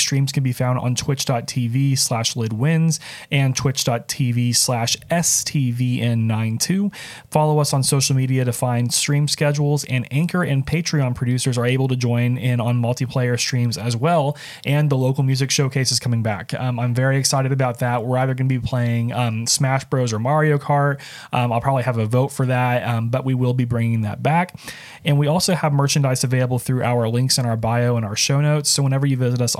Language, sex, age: English, male, 30-49